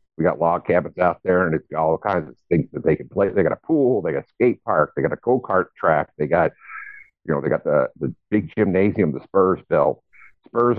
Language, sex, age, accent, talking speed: English, male, 50-69, American, 245 wpm